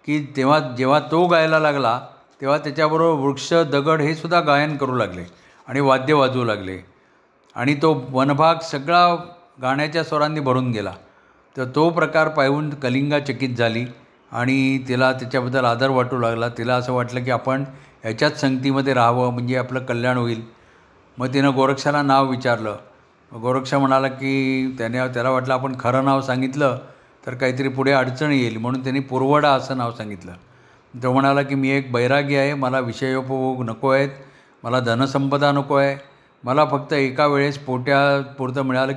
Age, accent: 50-69, native